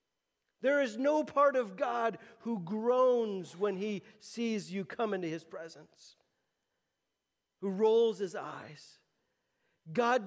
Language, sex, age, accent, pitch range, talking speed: English, male, 40-59, American, 180-255 Hz, 125 wpm